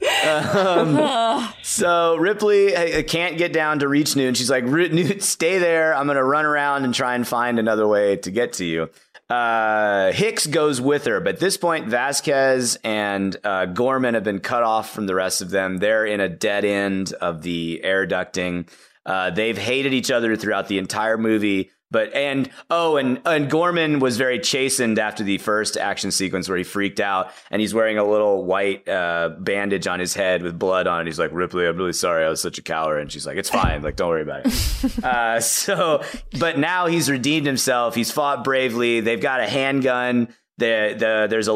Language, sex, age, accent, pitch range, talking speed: English, male, 30-49, American, 100-135 Hz, 205 wpm